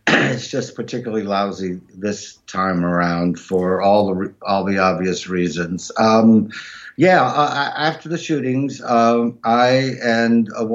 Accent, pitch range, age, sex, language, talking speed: American, 100-120 Hz, 50-69, male, English, 150 wpm